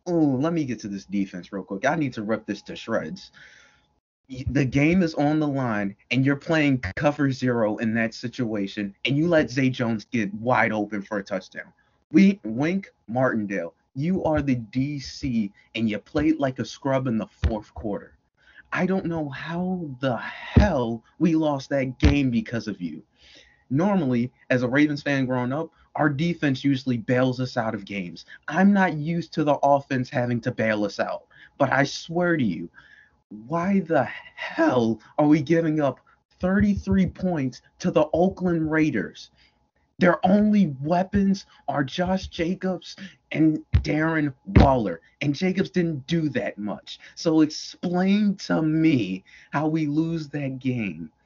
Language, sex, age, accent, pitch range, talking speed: English, male, 30-49, American, 115-165 Hz, 165 wpm